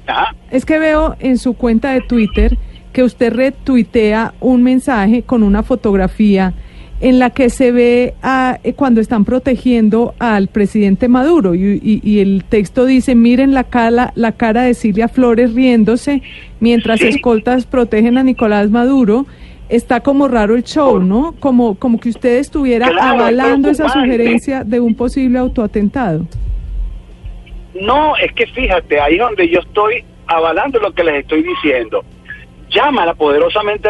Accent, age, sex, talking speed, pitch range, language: Colombian, 40-59, female, 145 wpm, 195-255 Hz, Spanish